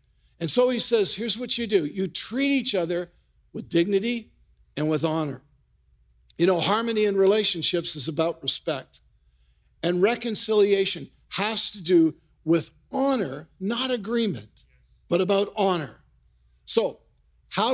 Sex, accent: male, American